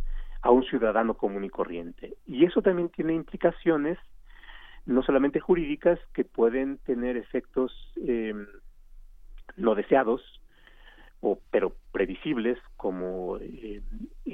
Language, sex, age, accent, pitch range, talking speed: Spanish, male, 40-59, Mexican, 110-165 Hz, 110 wpm